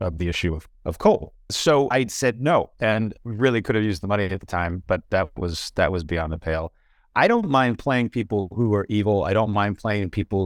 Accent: American